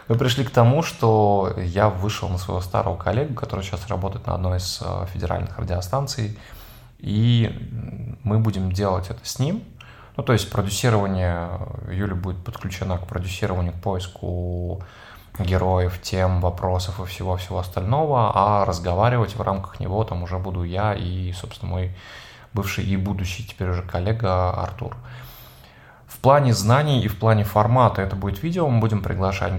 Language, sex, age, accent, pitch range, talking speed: Russian, male, 20-39, native, 95-115 Hz, 150 wpm